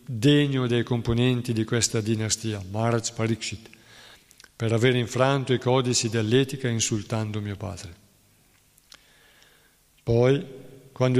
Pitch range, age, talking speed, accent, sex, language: 115-135 Hz, 50-69, 100 wpm, native, male, Italian